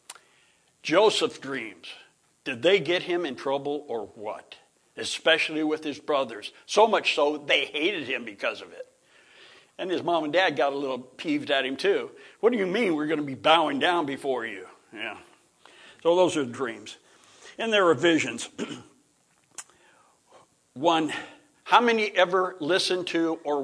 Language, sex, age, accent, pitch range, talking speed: English, male, 60-79, American, 145-180 Hz, 160 wpm